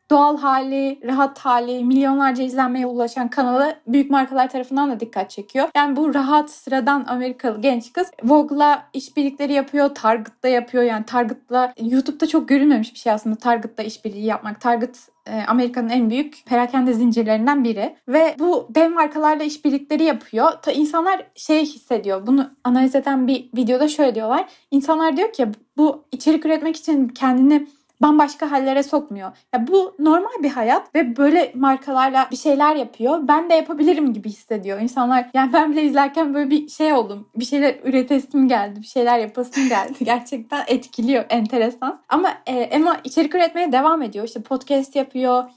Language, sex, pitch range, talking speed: Turkish, female, 240-290 Hz, 155 wpm